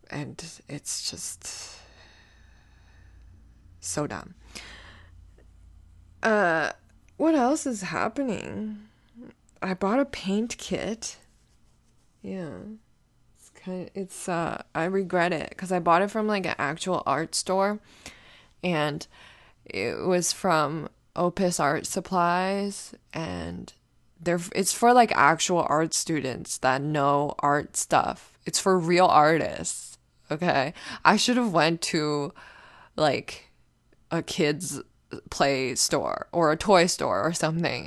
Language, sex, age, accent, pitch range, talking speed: English, female, 20-39, American, 140-185 Hz, 115 wpm